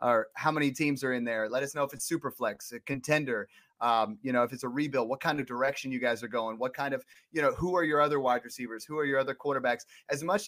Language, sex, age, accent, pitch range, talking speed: English, male, 30-49, American, 125-155 Hz, 280 wpm